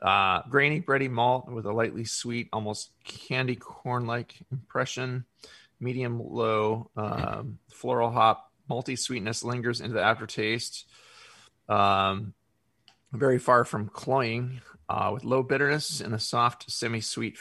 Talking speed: 130 wpm